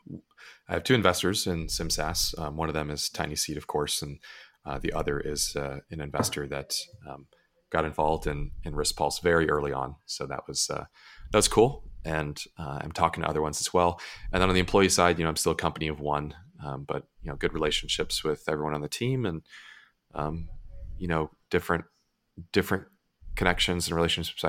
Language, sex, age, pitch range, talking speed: English, male, 30-49, 75-85 Hz, 205 wpm